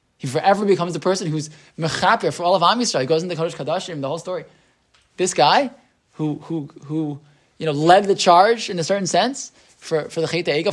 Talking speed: 220 wpm